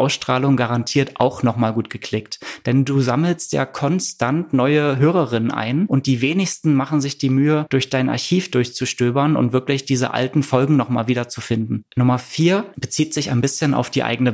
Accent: German